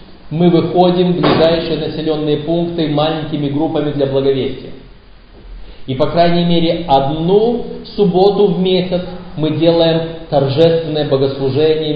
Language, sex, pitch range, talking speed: Russian, male, 130-185 Hz, 110 wpm